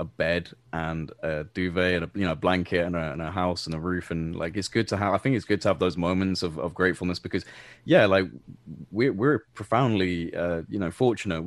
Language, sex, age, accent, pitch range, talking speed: English, male, 20-39, British, 90-105 Hz, 240 wpm